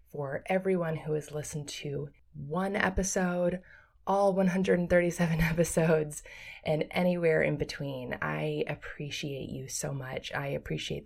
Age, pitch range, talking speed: 20-39, 145-170 Hz, 120 wpm